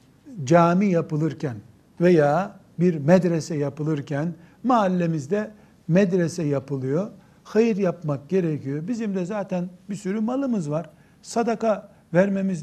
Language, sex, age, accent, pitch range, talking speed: Turkish, male, 60-79, native, 150-195 Hz, 100 wpm